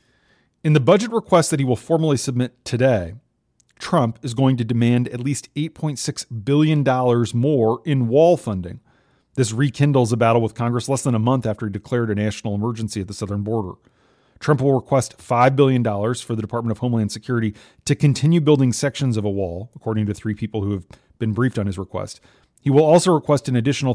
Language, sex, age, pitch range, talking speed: English, male, 30-49, 110-135 Hz, 195 wpm